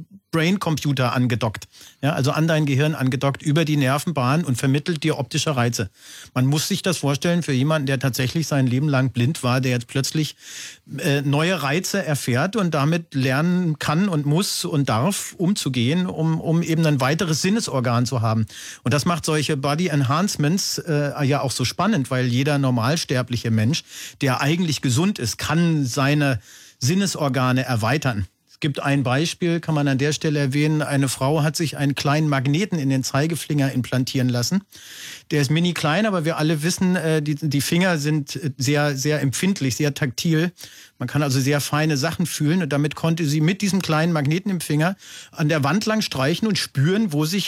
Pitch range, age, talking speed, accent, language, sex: 135-165 Hz, 40-59, 175 wpm, German, German, male